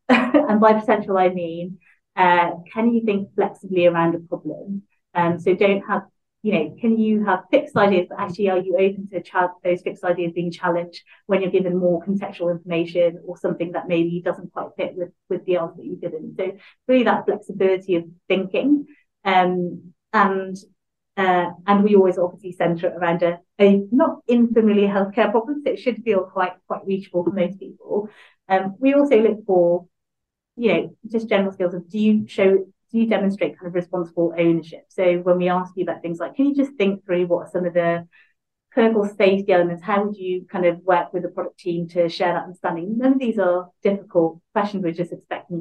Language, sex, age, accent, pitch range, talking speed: English, female, 30-49, British, 175-205 Hz, 200 wpm